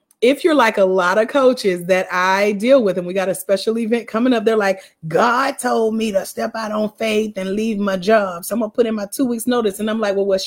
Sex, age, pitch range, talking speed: female, 30-49, 195-270 Hz, 275 wpm